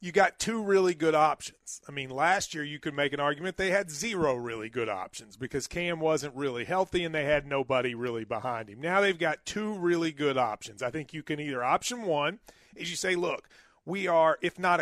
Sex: male